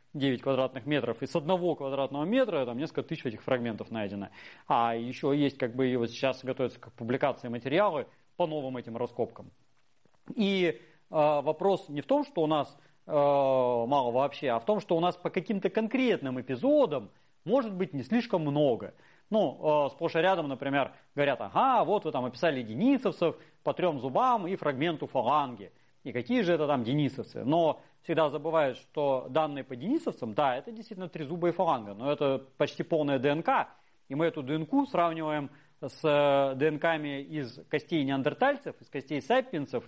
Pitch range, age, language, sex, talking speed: 130-170 Hz, 30-49, Russian, male, 170 wpm